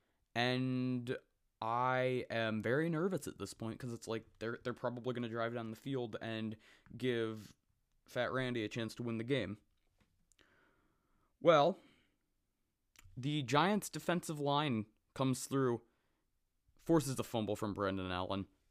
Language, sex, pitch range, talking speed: English, male, 95-125 Hz, 135 wpm